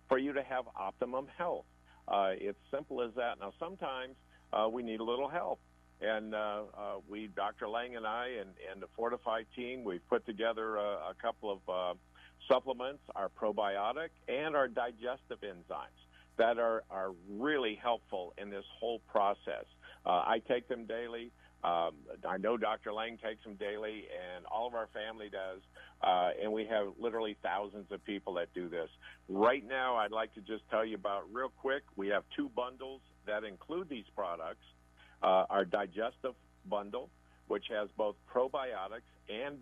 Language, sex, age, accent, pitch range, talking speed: English, male, 50-69, American, 95-120 Hz, 175 wpm